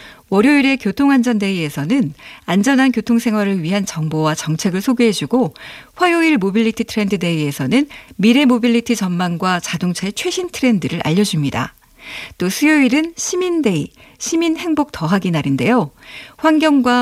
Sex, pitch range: female, 185-255 Hz